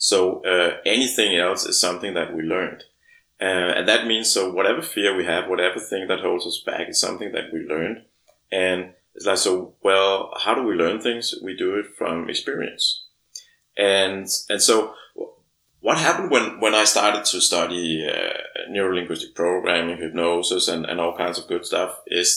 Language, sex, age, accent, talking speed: Danish, male, 30-49, native, 180 wpm